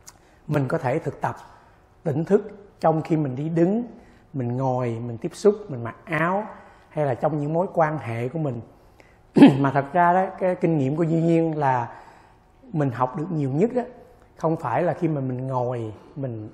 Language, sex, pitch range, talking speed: Vietnamese, male, 130-170 Hz, 195 wpm